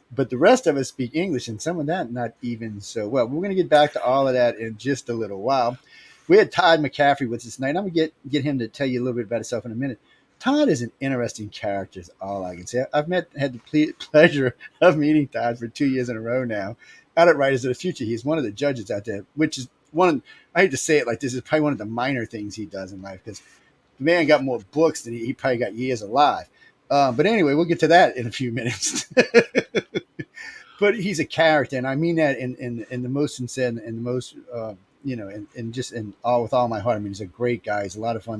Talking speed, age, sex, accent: 280 wpm, 30-49, male, American